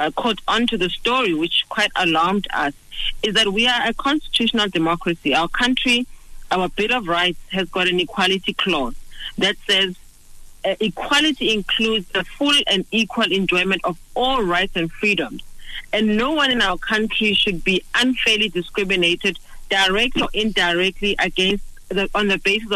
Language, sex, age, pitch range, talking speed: English, female, 40-59, 185-220 Hz, 155 wpm